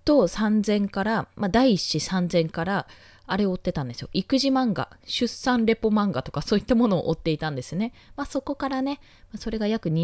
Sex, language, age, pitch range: female, Japanese, 20-39, 165-245 Hz